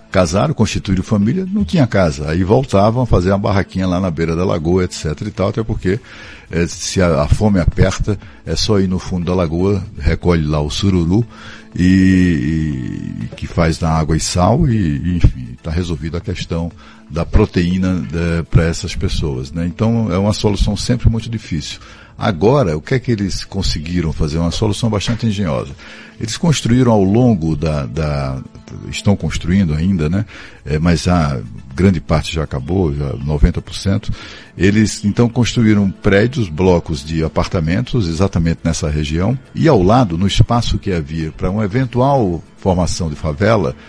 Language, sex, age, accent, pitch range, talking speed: Portuguese, male, 60-79, Brazilian, 85-110 Hz, 160 wpm